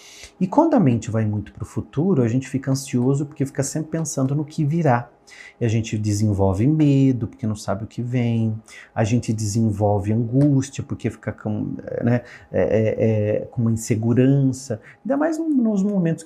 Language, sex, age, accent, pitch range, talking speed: Portuguese, male, 40-59, Brazilian, 115-160 Hz, 165 wpm